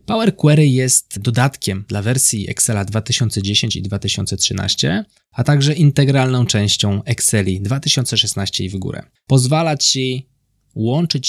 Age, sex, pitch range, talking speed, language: 20-39, male, 105-140 Hz, 115 wpm, Polish